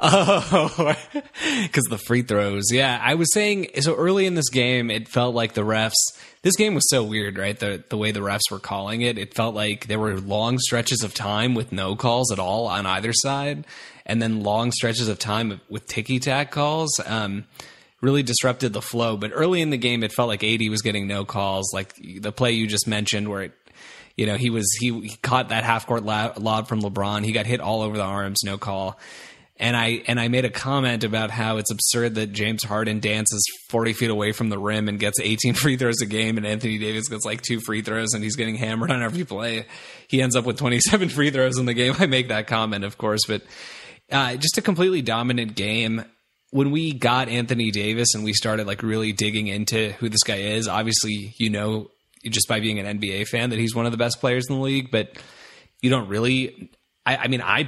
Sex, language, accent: male, English, American